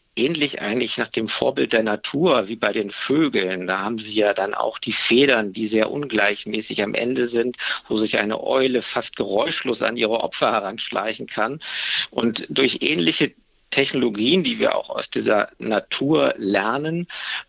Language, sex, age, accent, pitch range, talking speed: German, male, 50-69, German, 110-135 Hz, 160 wpm